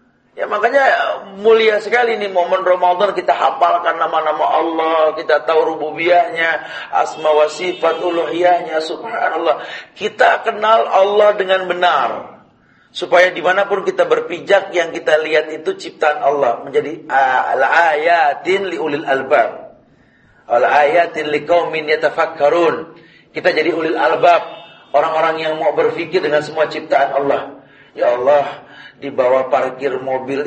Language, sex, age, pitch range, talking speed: Malay, male, 40-59, 140-180 Hz, 115 wpm